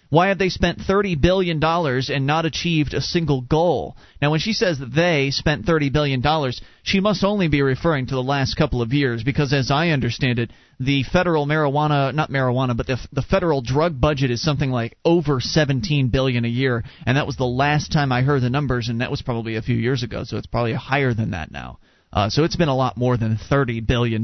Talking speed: 225 wpm